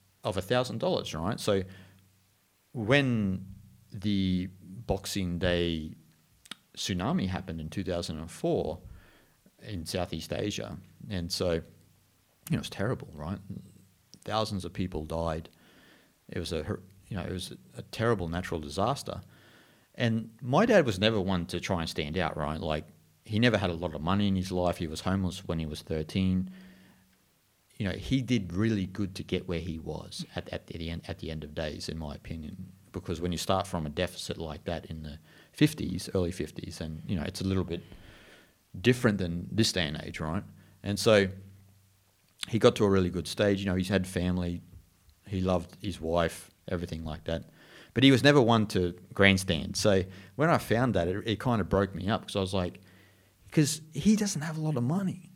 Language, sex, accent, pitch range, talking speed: English, male, Australian, 85-105 Hz, 185 wpm